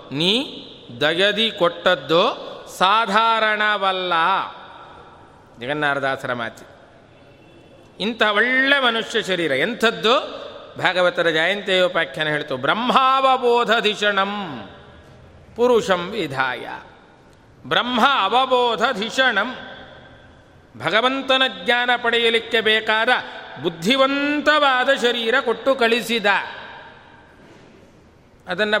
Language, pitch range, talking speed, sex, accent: Kannada, 155-230 Hz, 60 wpm, male, native